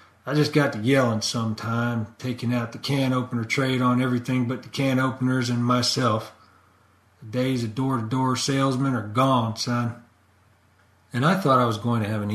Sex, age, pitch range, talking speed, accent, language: male, 40-59, 110-135 Hz, 180 wpm, American, English